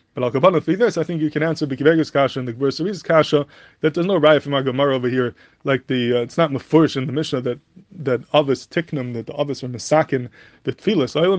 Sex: male